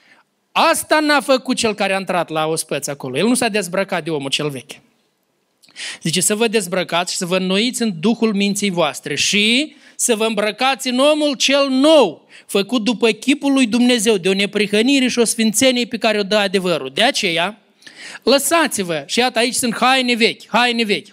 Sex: male